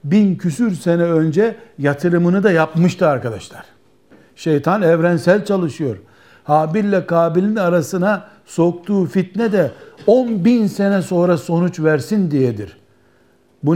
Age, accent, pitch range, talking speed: 60-79, native, 155-185 Hz, 115 wpm